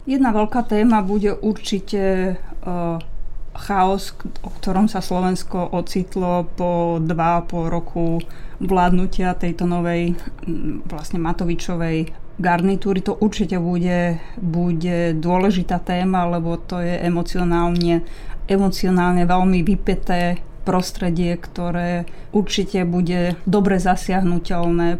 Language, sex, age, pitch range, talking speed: Slovak, female, 20-39, 170-190 Hz, 100 wpm